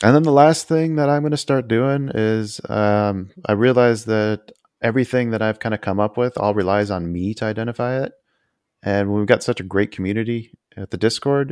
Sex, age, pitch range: male, 30-49, 85-105 Hz